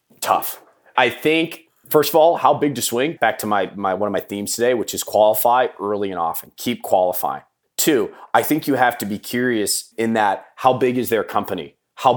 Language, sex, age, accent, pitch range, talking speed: English, male, 30-49, American, 100-130 Hz, 210 wpm